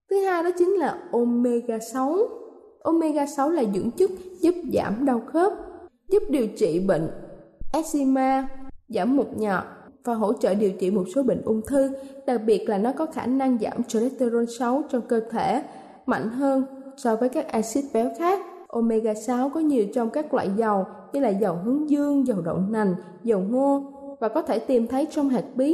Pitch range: 225-290 Hz